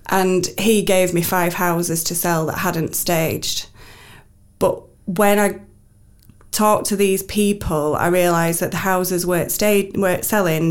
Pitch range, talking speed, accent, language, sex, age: 170-190 Hz, 150 wpm, British, English, female, 20-39